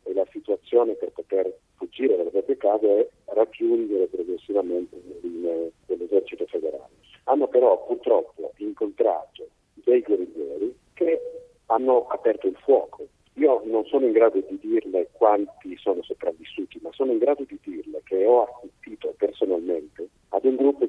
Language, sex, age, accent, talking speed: Italian, male, 50-69, native, 135 wpm